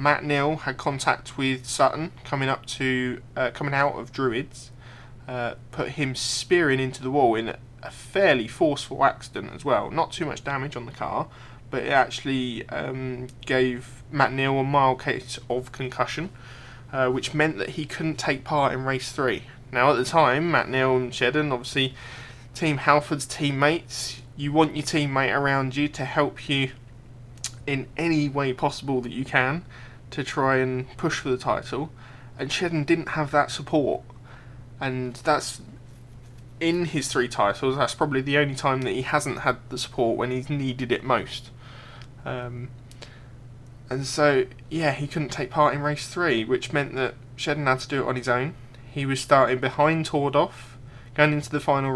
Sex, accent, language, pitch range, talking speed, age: male, British, English, 125-145 Hz, 175 wpm, 20-39